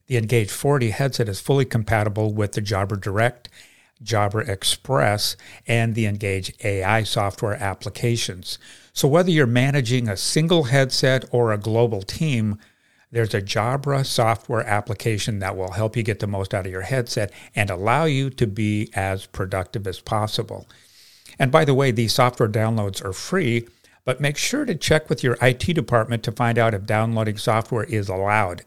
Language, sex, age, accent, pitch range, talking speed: English, male, 50-69, American, 105-130 Hz, 170 wpm